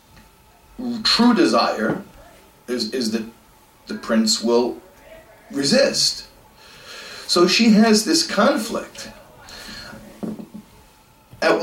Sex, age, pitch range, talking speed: male, 40-59, 125-205 Hz, 75 wpm